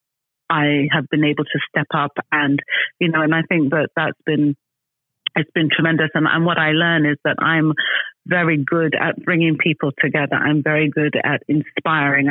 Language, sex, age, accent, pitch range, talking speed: English, female, 30-49, British, 140-155 Hz, 185 wpm